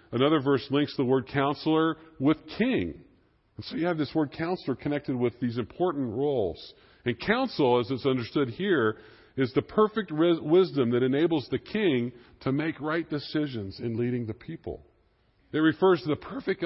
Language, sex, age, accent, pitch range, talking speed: English, female, 50-69, American, 120-155 Hz, 170 wpm